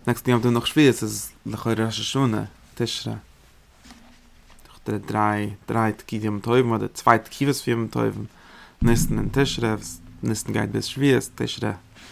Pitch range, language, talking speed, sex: 105-120 Hz, English, 110 wpm, male